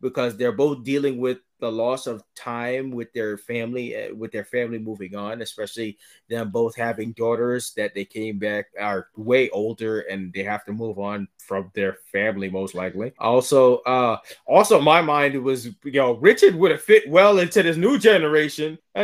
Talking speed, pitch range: 185 wpm, 120-190 Hz